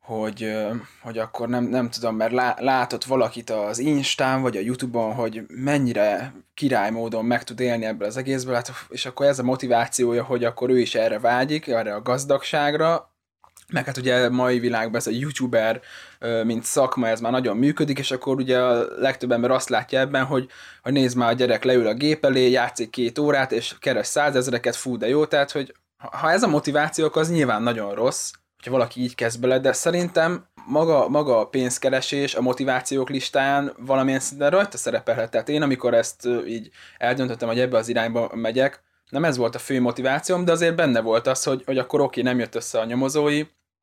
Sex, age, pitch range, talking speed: male, 20-39, 115-140 Hz, 190 wpm